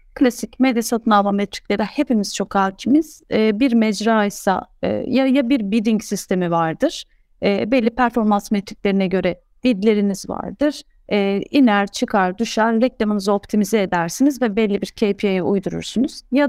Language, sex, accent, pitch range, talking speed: Turkish, female, native, 200-255 Hz, 145 wpm